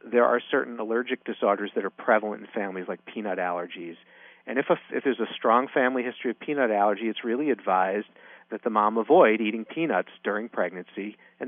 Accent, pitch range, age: American, 100-125 Hz, 40-59